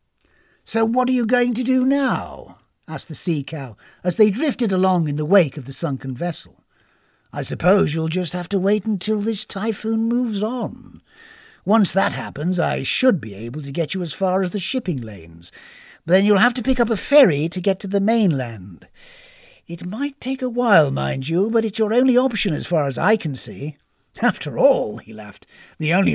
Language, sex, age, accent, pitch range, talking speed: English, male, 60-79, British, 160-240 Hz, 200 wpm